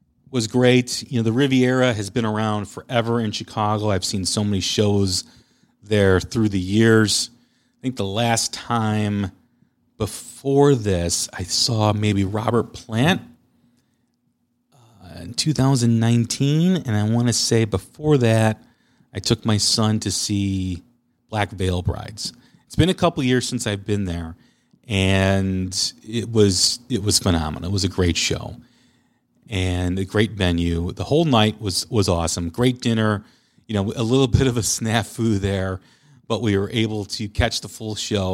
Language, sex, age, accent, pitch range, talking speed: English, male, 40-59, American, 100-120 Hz, 160 wpm